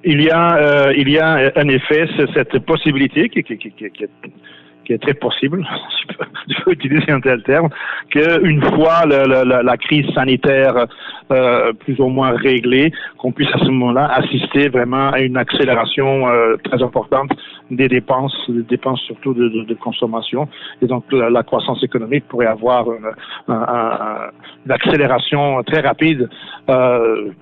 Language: French